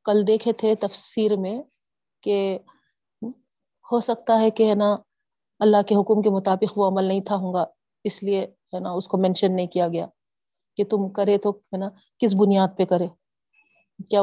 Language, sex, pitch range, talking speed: Urdu, female, 190-220 Hz, 170 wpm